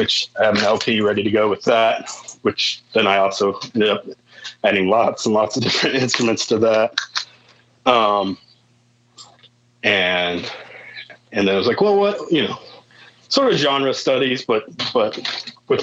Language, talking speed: English, 165 wpm